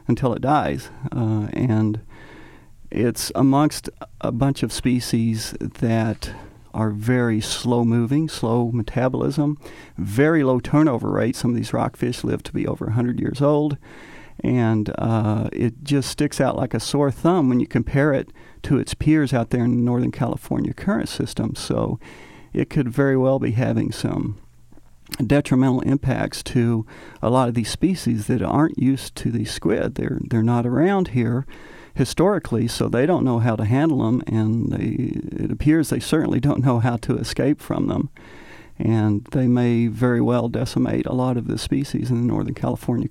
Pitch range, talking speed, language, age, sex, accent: 115-135 Hz, 170 wpm, English, 40-59, male, American